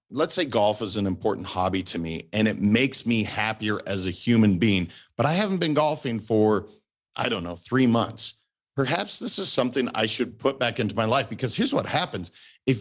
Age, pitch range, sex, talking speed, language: 40-59, 105-130 Hz, male, 210 wpm, English